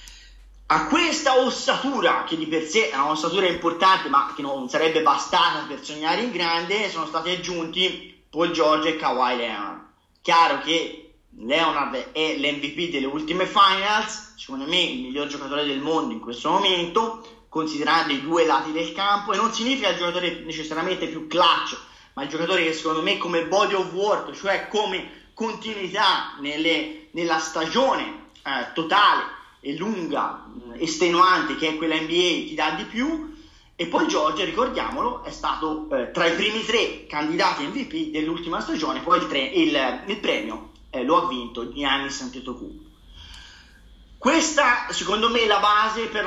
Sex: male